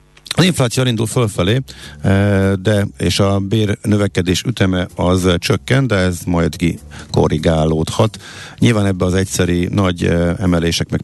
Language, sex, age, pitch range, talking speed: Hungarian, male, 50-69, 80-110 Hz, 130 wpm